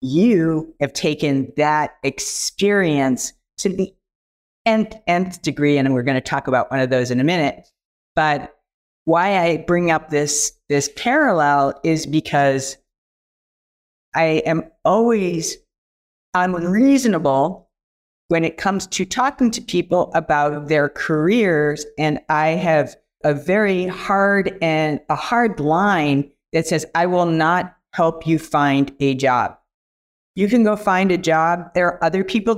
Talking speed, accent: 140 wpm, American